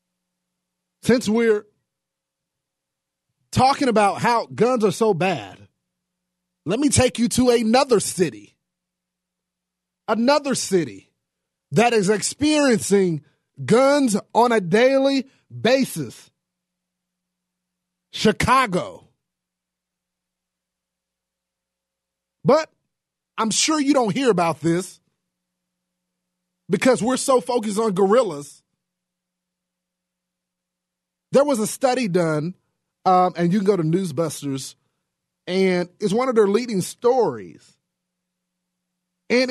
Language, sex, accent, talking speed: English, male, American, 95 wpm